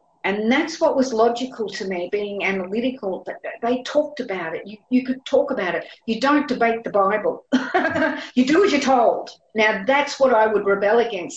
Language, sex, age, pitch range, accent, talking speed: English, female, 50-69, 190-255 Hz, Australian, 190 wpm